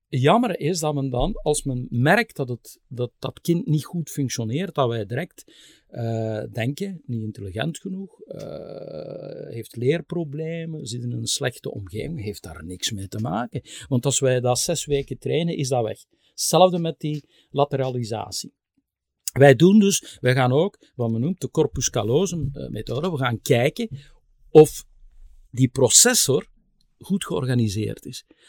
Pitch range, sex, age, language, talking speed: 120-150 Hz, male, 50-69, Dutch, 155 wpm